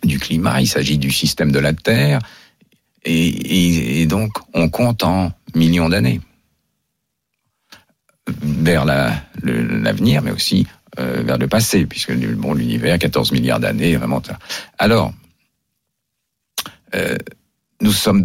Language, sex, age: French, male, 60-79